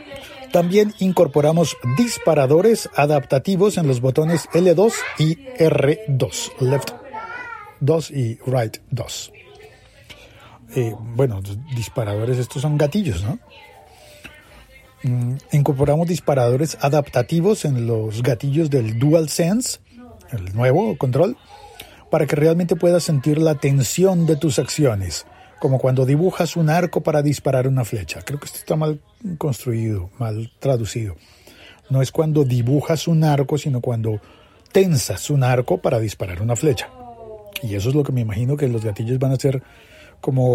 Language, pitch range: Spanish, 120-160 Hz